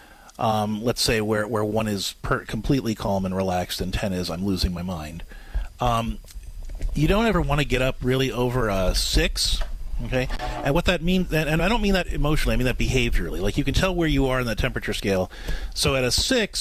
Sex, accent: male, American